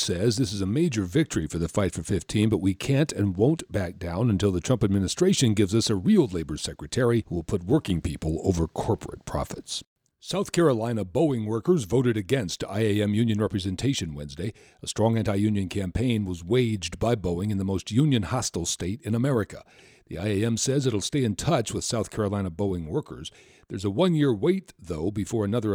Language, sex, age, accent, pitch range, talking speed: English, male, 60-79, American, 95-130 Hz, 185 wpm